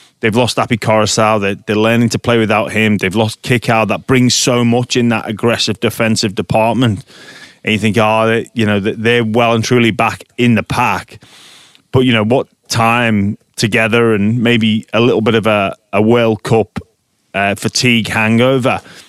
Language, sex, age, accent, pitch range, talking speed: English, male, 30-49, British, 110-120 Hz, 180 wpm